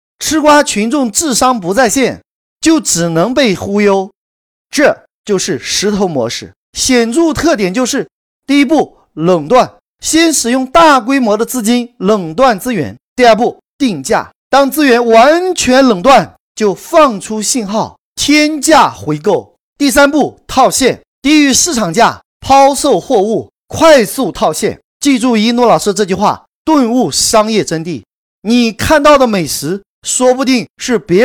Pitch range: 225-285 Hz